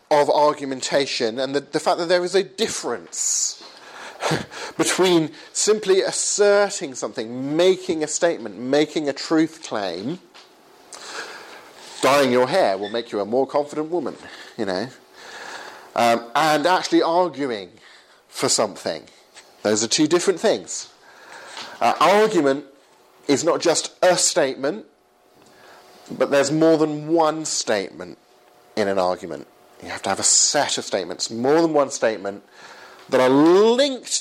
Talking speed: 135 wpm